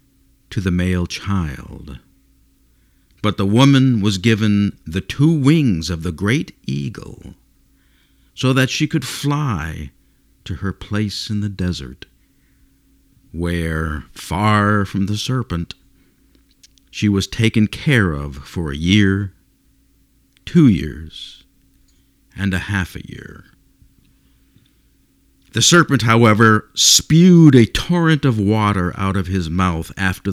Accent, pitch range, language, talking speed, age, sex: American, 85-115 Hz, English, 120 wpm, 50-69, male